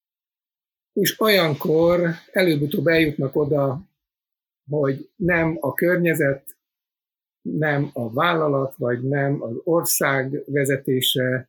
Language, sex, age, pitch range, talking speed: Hungarian, male, 50-69, 125-160 Hz, 85 wpm